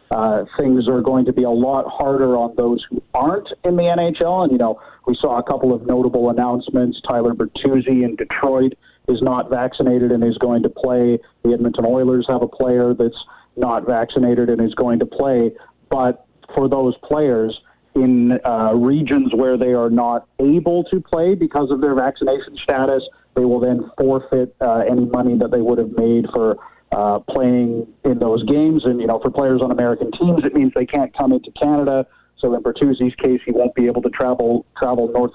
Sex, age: male, 40-59